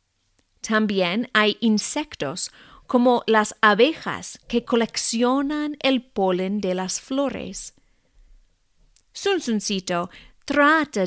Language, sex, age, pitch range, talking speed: English, female, 40-59, 195-265 Hz, 80 wpm